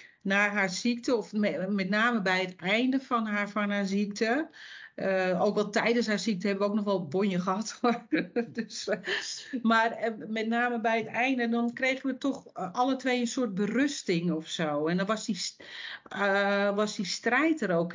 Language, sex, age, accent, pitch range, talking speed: Dutch, female, 40-59, Dutch, 180-220 Hz, 190 wpm